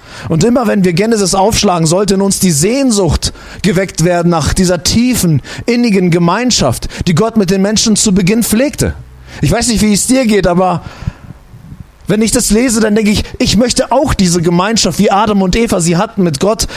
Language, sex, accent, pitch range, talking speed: German, male, German, 185-225 Hz, 195 wpm